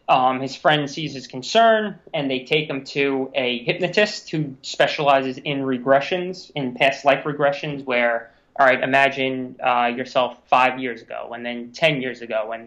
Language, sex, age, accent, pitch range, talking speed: English, male, 20-39, American, 130-155 Hz, 170 wpm